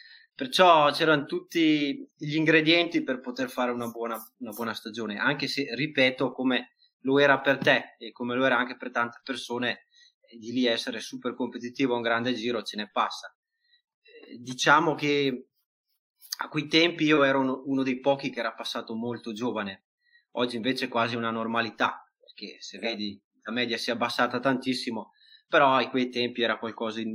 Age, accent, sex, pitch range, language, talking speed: 20-39, native, male, 120-155 Hz, Italian, 170 wpm